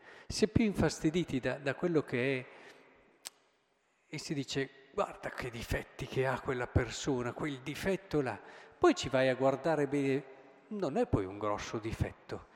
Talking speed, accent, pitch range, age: 160 wpm, native, 130-200 Hz, 50-69